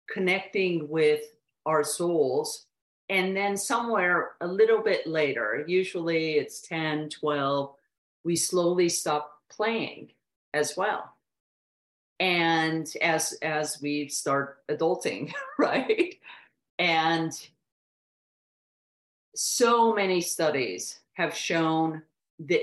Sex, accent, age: female, American, 40-59